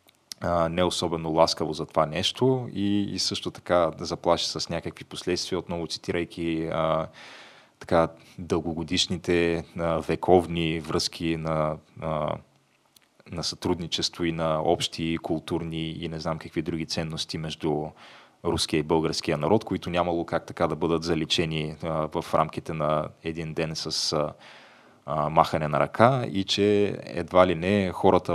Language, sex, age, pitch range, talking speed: Bulgarian, male, 20-39, 80-95 Hz, 135 wpm